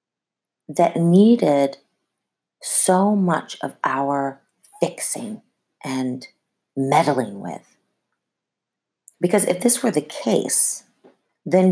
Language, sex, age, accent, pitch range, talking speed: English, female, 40-59, American, 140-205 Hz, 85 wpm